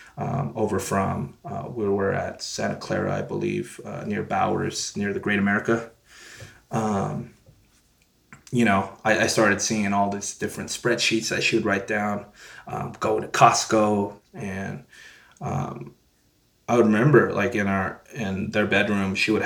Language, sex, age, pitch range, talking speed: English, male, 20-39, 95-110 Hz, 155 wpm